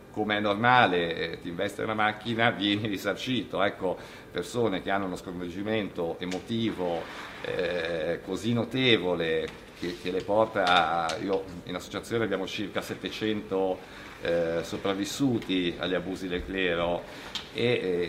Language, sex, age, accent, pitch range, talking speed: Italian, male, 50-69, native, 95-115 Hz, 125 wpm